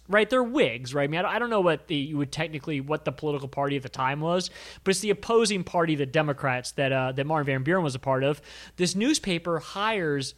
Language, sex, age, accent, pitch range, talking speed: English, male, 30-49, American, 140-180 Hz, 245 wpm